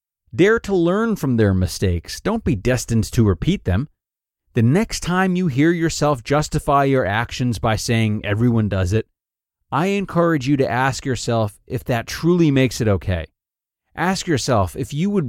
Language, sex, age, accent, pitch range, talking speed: English, male, 30-49, American, 100-135 Hz, 170 wpm